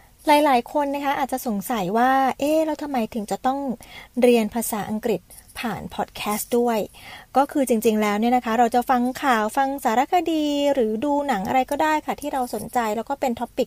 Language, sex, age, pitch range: Thai, female, 20-39, 220-270 Hz